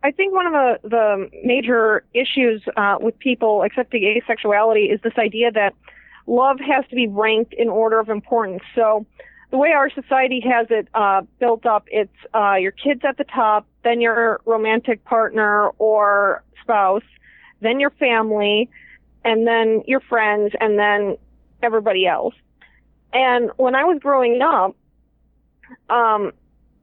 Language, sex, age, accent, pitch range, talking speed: English, female, 30-49, American, 215-250 Hz, 150 wpm